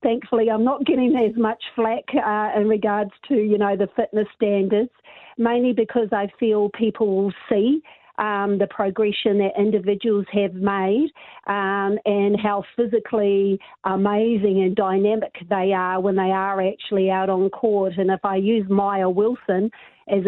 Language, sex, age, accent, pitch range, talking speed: English, female, 40-59, Australian, 190-215 Hz, 155 wpm